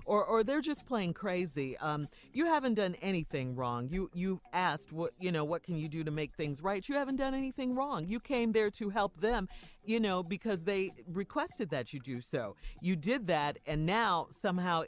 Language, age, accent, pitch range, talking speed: English, 40-59, American, 160-220 Hz, 210 wpm